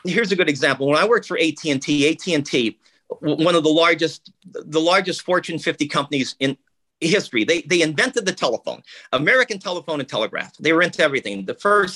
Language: English